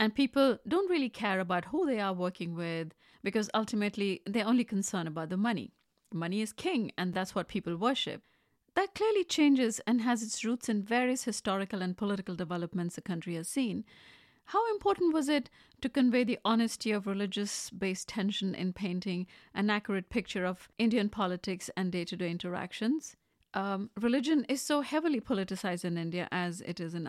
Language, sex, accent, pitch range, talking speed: English, female, Indian, 185-240 Hz, 175 wpm